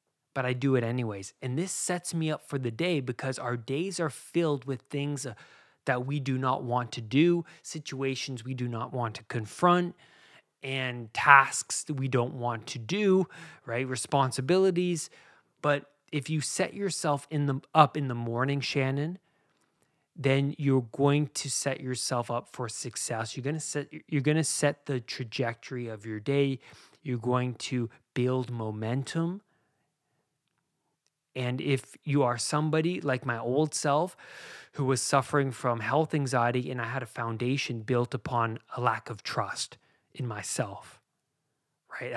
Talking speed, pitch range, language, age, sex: 160 wpm, 120-150 Hz, English, 20-39, male